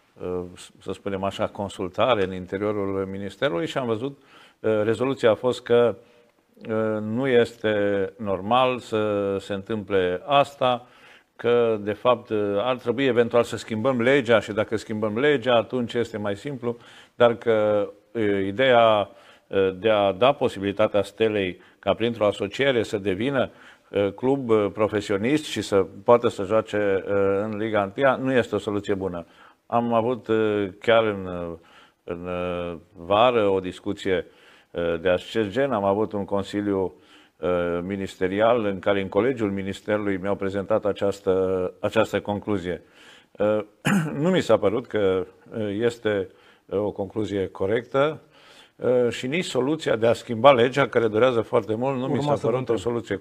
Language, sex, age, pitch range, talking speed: Romanian, male, 50-69, 100-120 Hz, 130 wpm